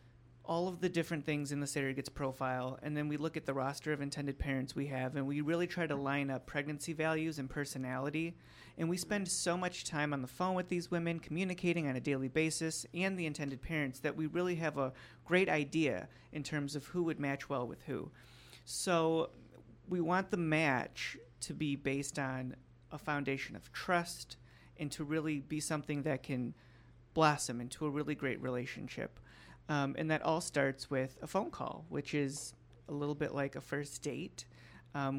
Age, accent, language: 30-49, American, English